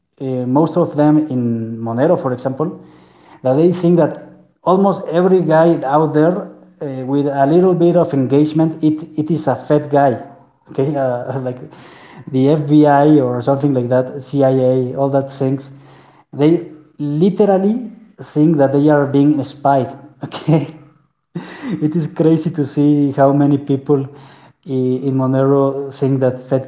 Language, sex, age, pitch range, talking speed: English, male, 20-39, 135-155 Hz, 145 wpm